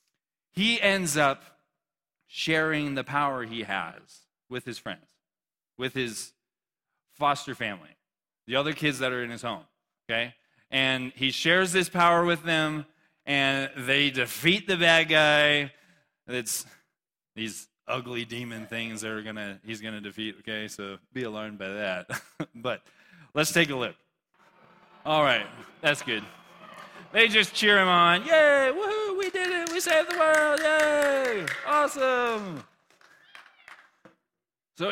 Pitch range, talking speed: 125-190 Hz, 135 wpm